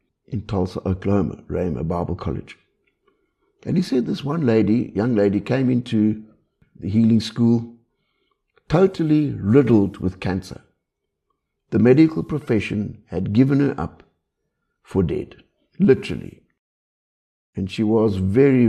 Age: 60-79